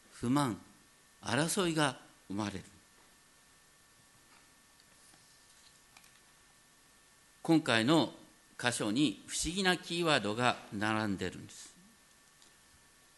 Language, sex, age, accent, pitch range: Japanese, male, 50-69, native, 105-170 Hz